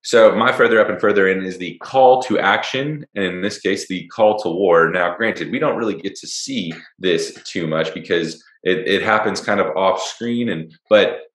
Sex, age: male, 20-39